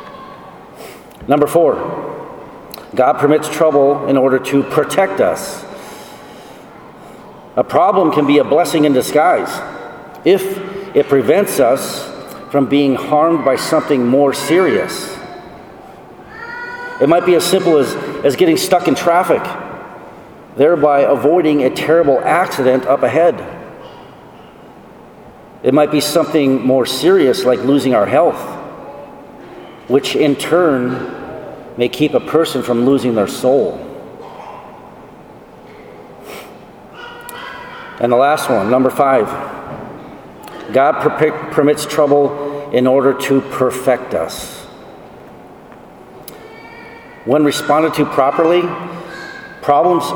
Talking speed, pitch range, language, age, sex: 105 wpm, 135-175 Hz, English, 40-59, male